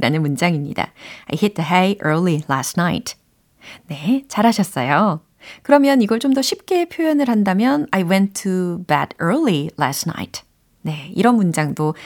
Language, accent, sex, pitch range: Korean, native, female, 160-235 Hz